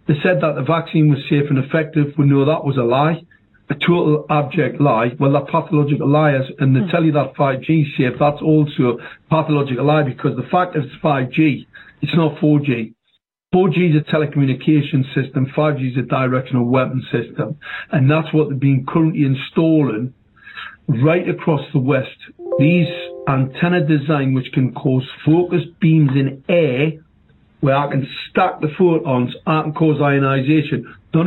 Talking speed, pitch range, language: 170 wpm, 140-165 Hz, English